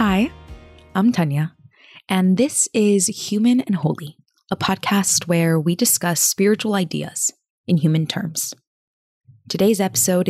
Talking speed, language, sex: 120 wpm, English, female